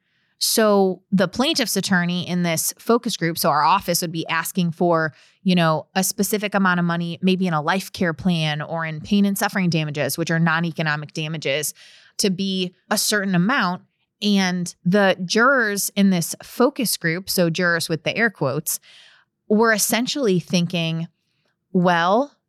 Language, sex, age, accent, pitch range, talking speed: English, female, 20-39, American, 170-205 Hz, 160 wpm